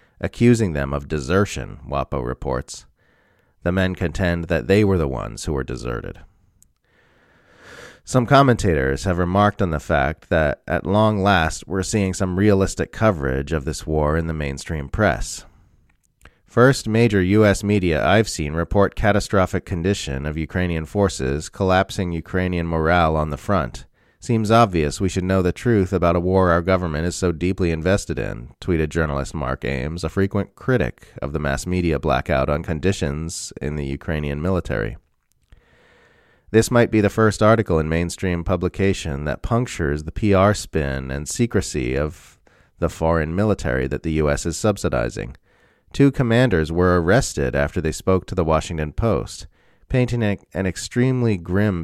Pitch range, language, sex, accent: 75-100 Hz, English, male, American